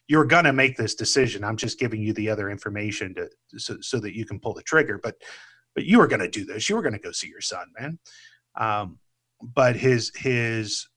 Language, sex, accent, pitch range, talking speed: English, male, American, 110-130 Hz, 220 wpm